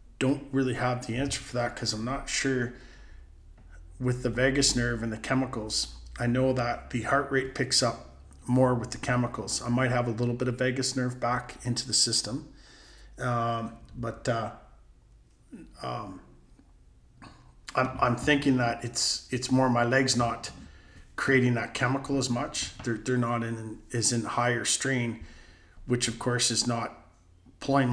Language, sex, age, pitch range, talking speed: English, male, 40-59, 115-130 Hz, 165 wpm